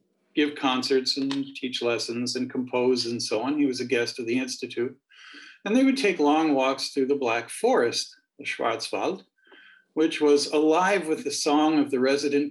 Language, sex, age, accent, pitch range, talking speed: English, male, 50-69, American, 125-155 Hz, 180 wpm